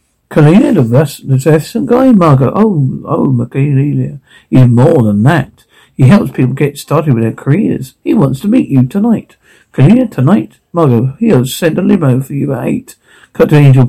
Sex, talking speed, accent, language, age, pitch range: male, 180 wpm, British, English, 60-79, 130-160 Hz